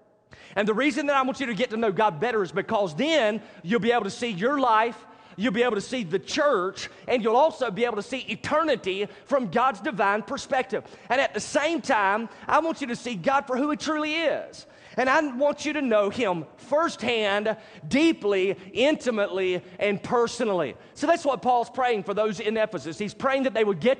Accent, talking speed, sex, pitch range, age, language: American, 215 wpm, male, 200-255 Hz, 30-49, English